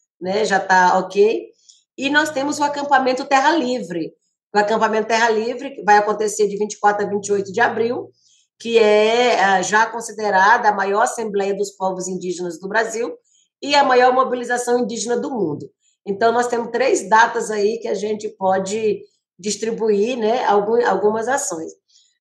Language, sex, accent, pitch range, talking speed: Portuguese, female, Brazilian, 195-240 Hz, 150 wpm